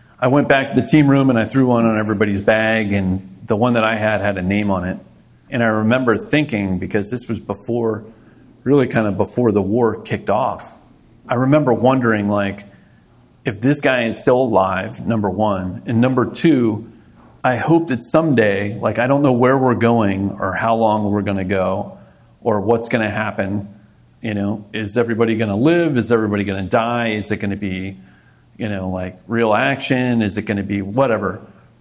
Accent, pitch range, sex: American, 100-120 Hz, male